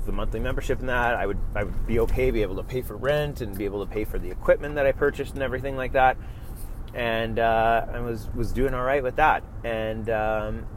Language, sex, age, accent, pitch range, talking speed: English, male, 30-49, American, 105-120 Hz, 240 wpm